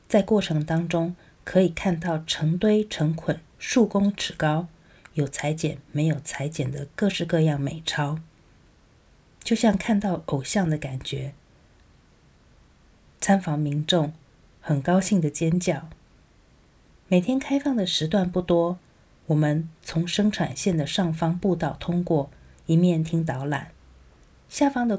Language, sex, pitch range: Chinese, female, 150-190 Hz